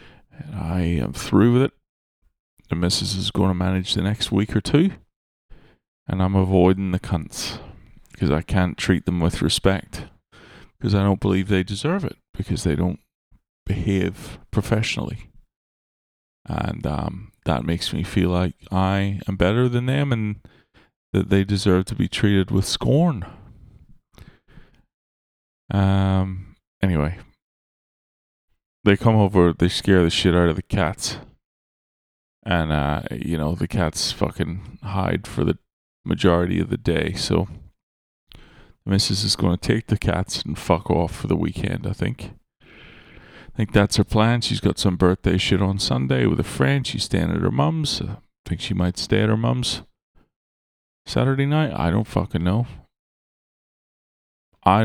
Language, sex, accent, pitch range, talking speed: English, male, American, 90-105 Hz, 155 wpm